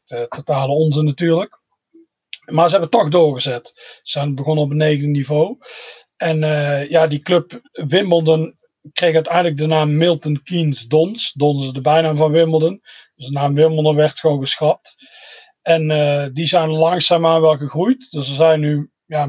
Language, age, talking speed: Dutch, 40-59, 170 wpm